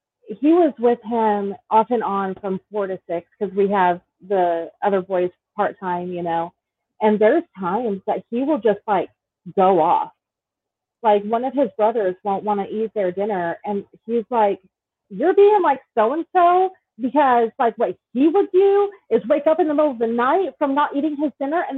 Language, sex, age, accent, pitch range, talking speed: English, female, 30-49, American, 195-275 Hz, 195 wpm